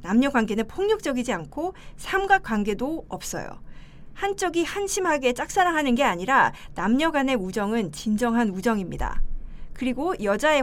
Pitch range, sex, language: 220-320 Hz, female, Korean